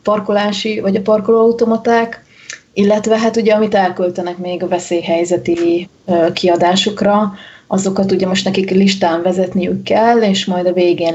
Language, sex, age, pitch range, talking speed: Hungarian, female, 30-49, 175-195 Hz, 135 wpm